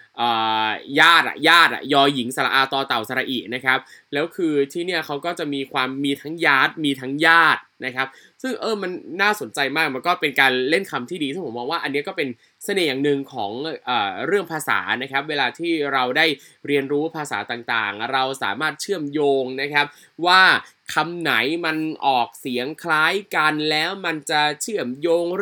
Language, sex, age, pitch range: Thai, male, 20-39, 135-175 Hz